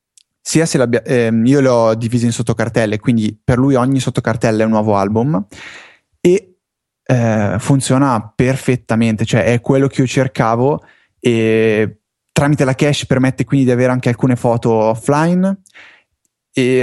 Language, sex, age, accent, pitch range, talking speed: Italian, male, 20-39, native, 115-130 Hz, 140 wpm